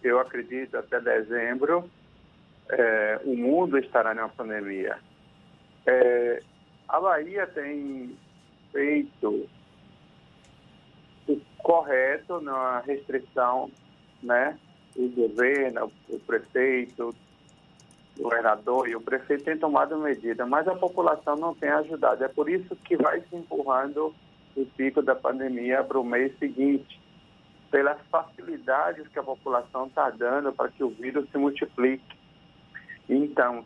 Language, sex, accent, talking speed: Portuguese, male, Brazilian, 120 wpm